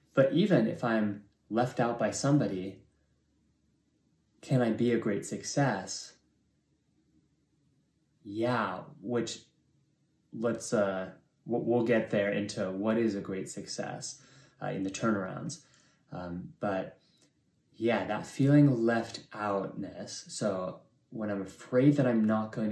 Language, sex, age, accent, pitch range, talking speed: English, male, 20-39, American, 100-125 Hz, 120 wpm